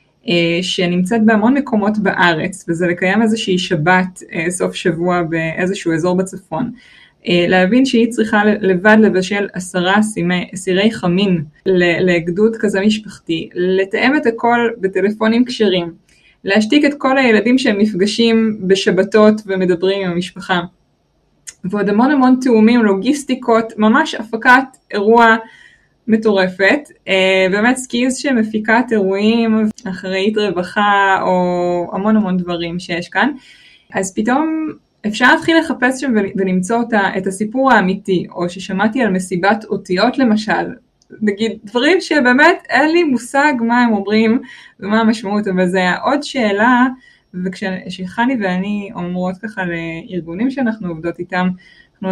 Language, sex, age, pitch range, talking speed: Hebrew, female, 20-39, 185-235 Hz, 115 wpm